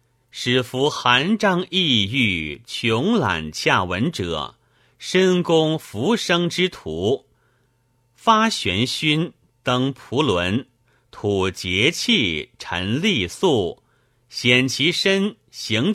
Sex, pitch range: male, 105-140 Hz